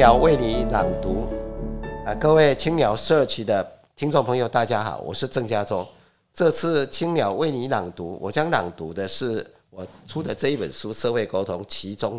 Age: 50-69